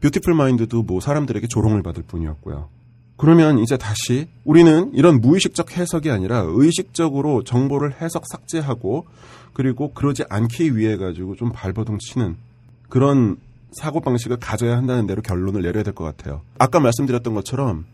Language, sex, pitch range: Korean, male, 105-145 Hz